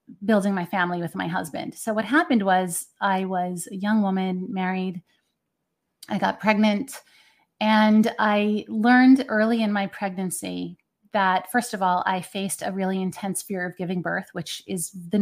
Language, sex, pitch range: English, female, 185-220 Hz